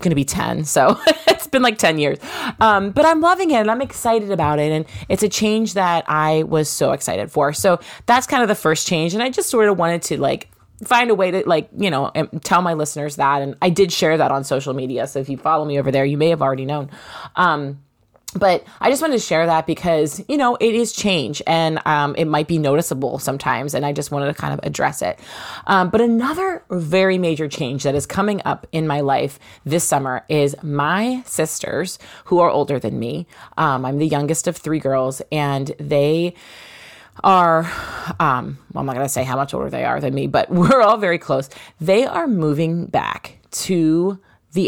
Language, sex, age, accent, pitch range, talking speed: English, female, 20-39, American, 145-190 Hz, 220 wpm